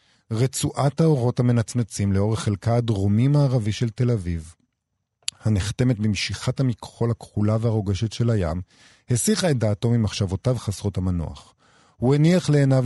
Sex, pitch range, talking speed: male, 95-130 Hz, 115 wpm